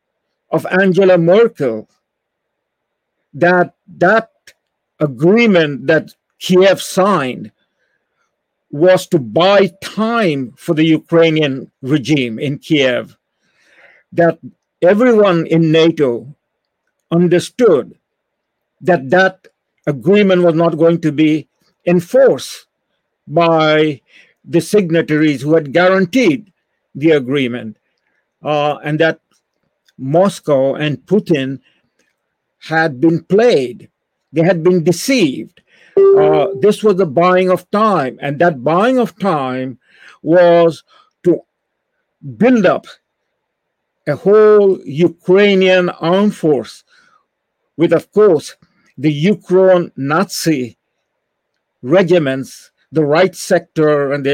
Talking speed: 95 wpm